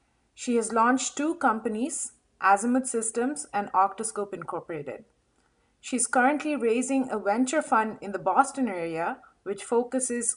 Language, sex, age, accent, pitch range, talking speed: English, female, 30-49, Indian, 200-255 Hz, 125 wpm